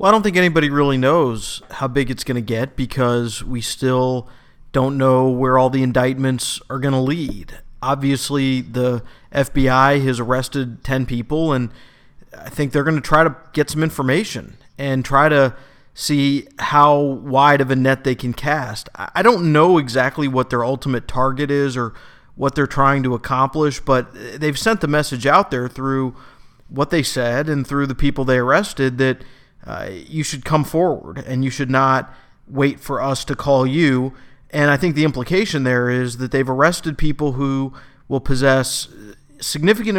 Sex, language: male, English